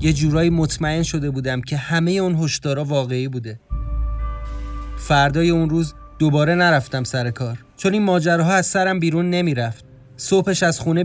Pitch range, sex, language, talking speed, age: 130-165 Hz, male, Persian, 150 wpm, 30-49